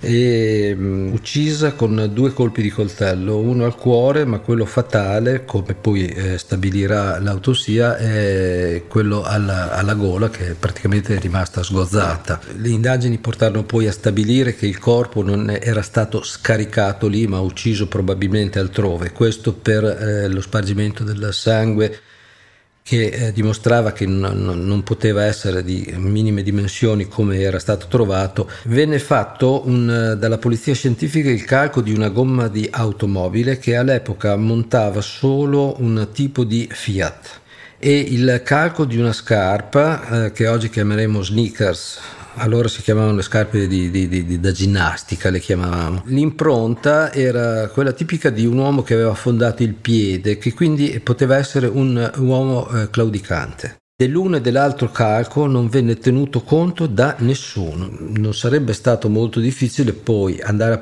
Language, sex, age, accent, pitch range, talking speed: Italian, male, 50-69, native, 100-125 Hz, 145 wpm